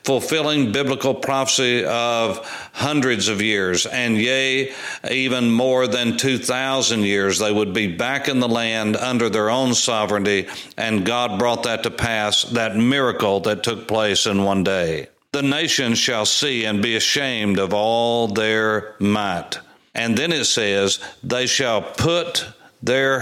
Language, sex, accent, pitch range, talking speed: English, male, American, 110-135 Hz, 150 wpm